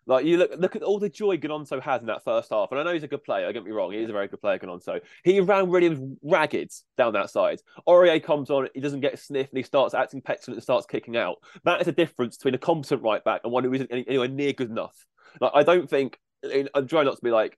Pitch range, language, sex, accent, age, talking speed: 115-150 Hz, English, male, British, 20-39, 285 wpm